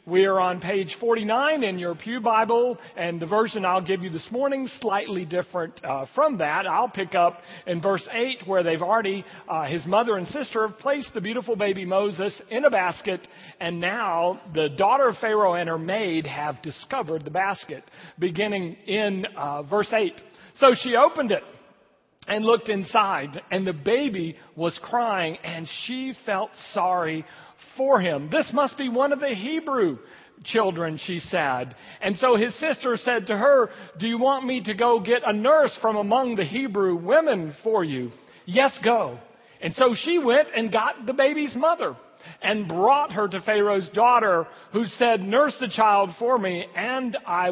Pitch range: 180-245 Hz